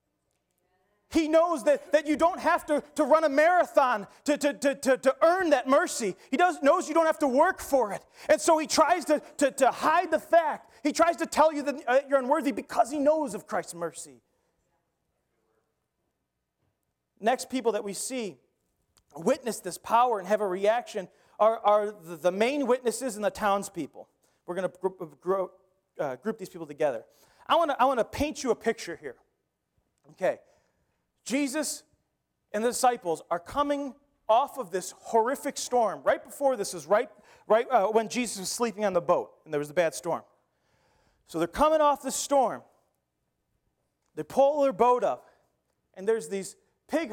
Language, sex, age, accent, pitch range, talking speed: English, male, 30-49, American, 195-285 Hz, 175 wpm